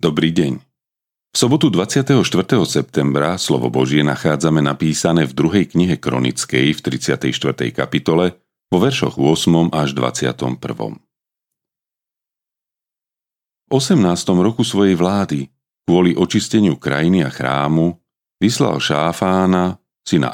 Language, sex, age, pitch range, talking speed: Slovak, male, 40-59, 70-90 Hz, 105 wpm